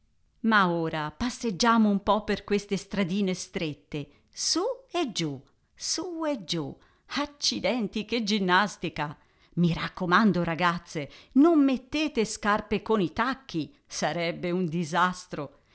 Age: 50-69